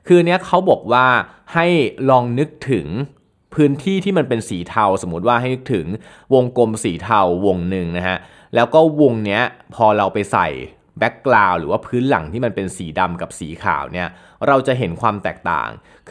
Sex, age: male, 20-39